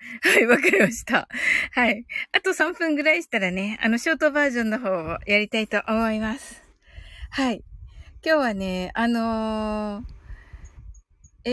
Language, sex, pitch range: Japanese, female, 200-280 Hz